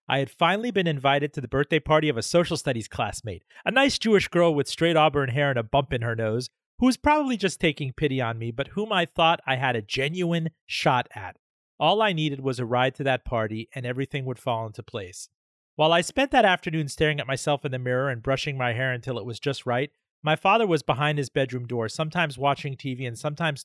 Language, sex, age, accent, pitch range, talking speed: English, male, 40-59, American, 125-160 Hz, 235 wpm